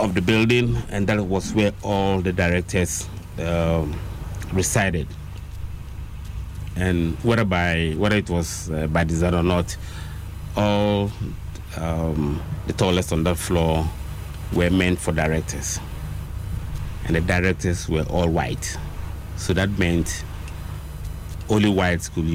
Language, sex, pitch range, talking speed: English, male, 80-95 Hz, 120 wpm